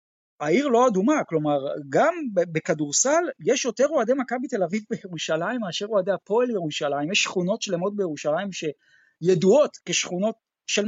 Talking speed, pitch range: 130 wpm, 175-240 Hz